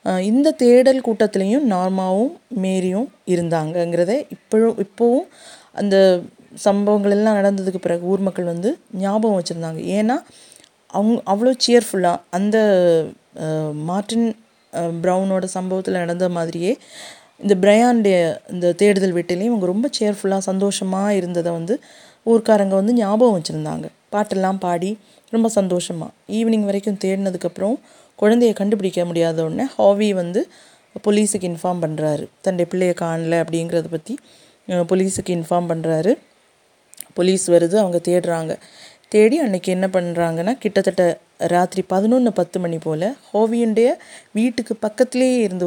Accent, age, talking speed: native, 20-39, 110 wpm